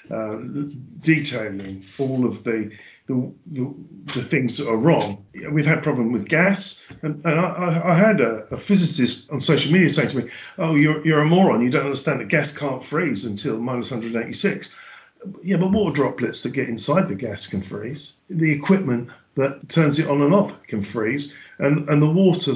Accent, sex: British, male